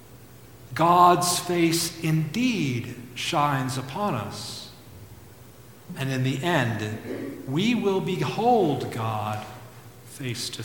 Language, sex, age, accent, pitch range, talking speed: English, male, 60-79, American, 120-150 Hz, 90 wpm